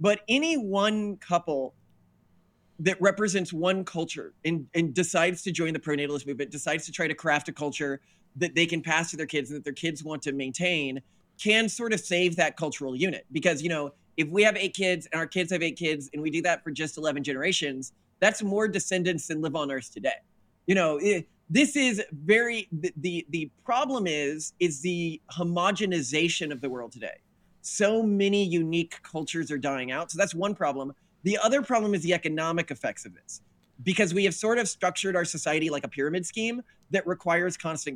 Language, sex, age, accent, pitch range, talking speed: English, male, 20-39, American, 150-185 Hz, 200 wpm